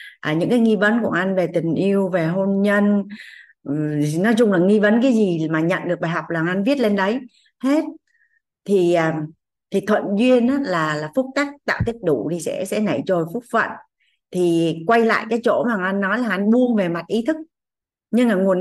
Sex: female